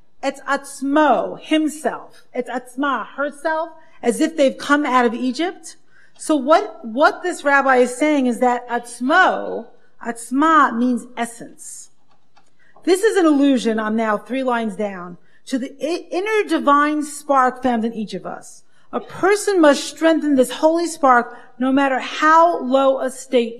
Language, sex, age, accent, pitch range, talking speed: English, female, 40-59, American, 240-310 Hz, 145 wpm